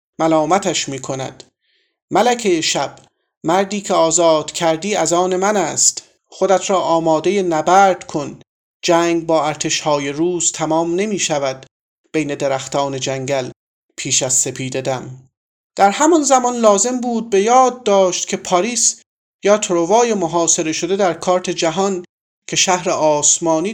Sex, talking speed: male, 130 wpm